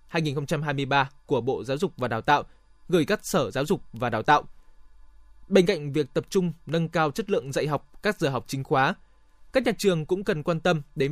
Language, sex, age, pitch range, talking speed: Vietnamese, male, 20-39, 145-190 Hz, 215 wpm